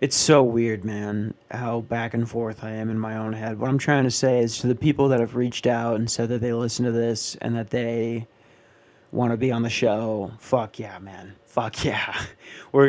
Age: 30-49